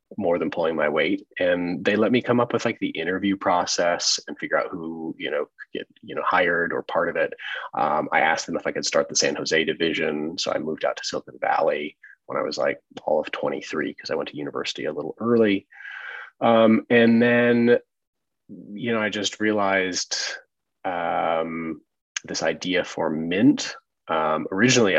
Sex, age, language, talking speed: male, 30-49, English, 190 wpm